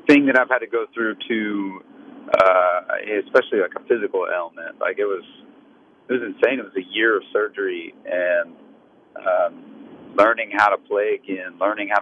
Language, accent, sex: English, American, male